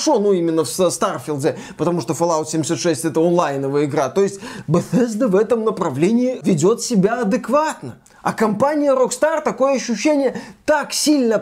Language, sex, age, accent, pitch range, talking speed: Russian, male, 20-39, native, 195-255 Hz, 140 wpm